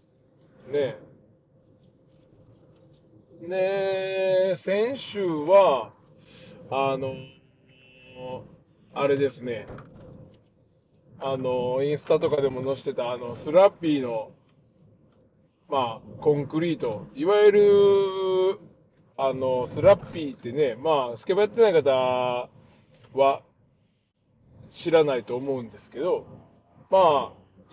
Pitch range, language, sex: 130-190 Hz, Japanese, male